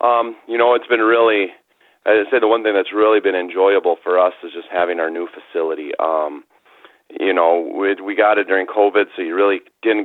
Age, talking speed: 30-49, 215 wpm